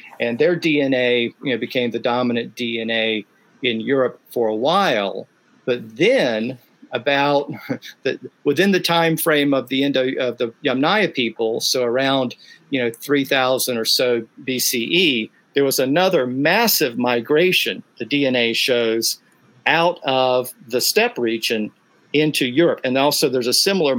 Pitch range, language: 120-150 Hz, English